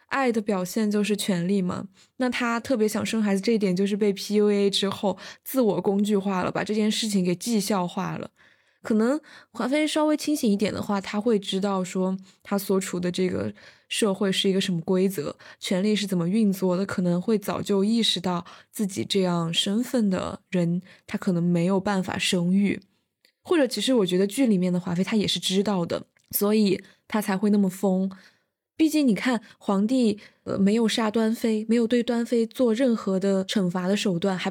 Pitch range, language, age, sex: 190-230 Hz, Chinese, 20-39, female